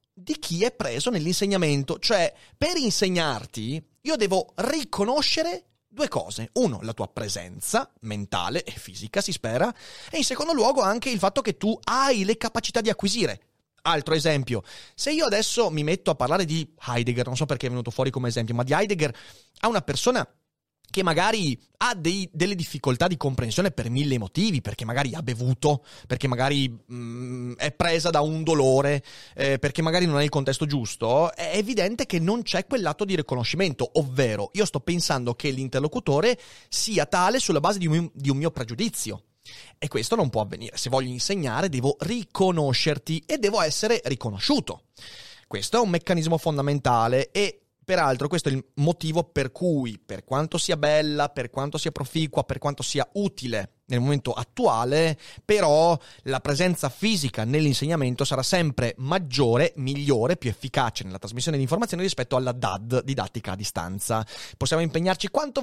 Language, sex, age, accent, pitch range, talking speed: Italian, male, 30-49, native, 125-185 Hz, 165 wpm